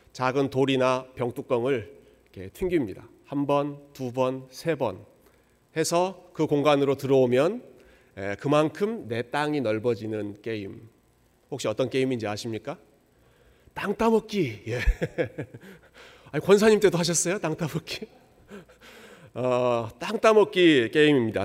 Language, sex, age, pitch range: Korean, male, 40-59, 120-165 Hz